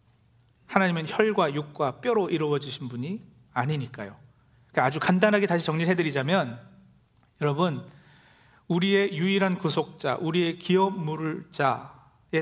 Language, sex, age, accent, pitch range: Korean, male, 40-59, native, 130-210 Hz